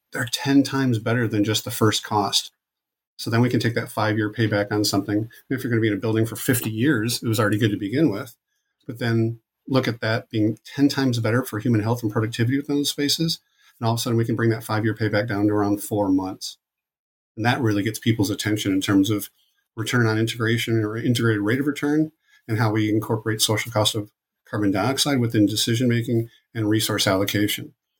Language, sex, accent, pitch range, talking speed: English, male, American, 105-120 Hz, 225 wpm